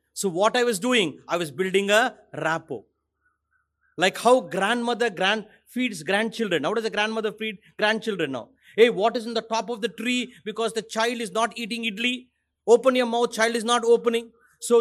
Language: English